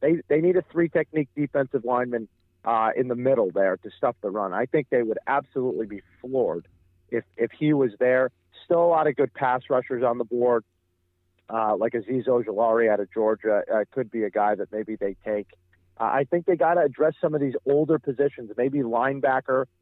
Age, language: 40-59, English